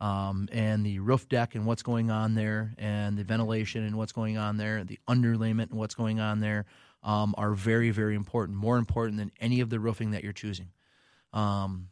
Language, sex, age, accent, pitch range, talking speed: English, male, 30-49, American, 105-115 Hz, 205 wpm